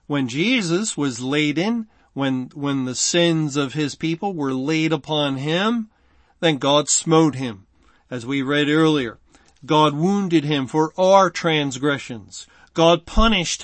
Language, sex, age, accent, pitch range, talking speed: English, male, 40-59, American, 145-170 Hz, 140 wpm